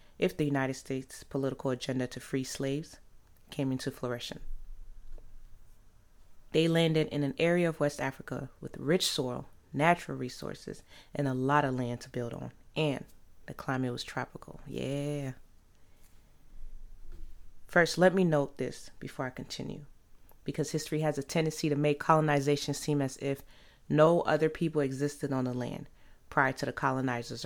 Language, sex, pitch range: English, female, 120-150 Hz